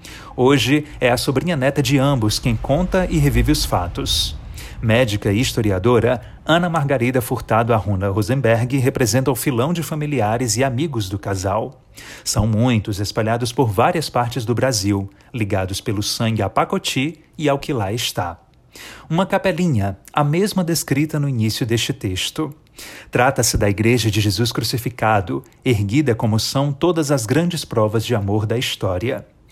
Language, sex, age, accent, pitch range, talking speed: Portuguese, male, 40-59, Brazilian, 110-145 Hz, 150 wpm